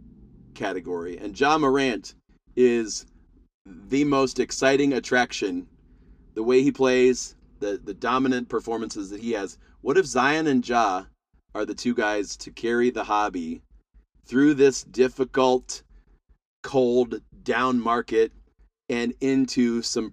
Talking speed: 125 wpm